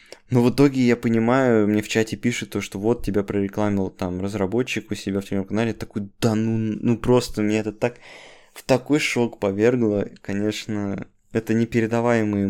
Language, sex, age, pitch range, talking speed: Russian, male, 20-39, 100-115 Hz, 170 wpm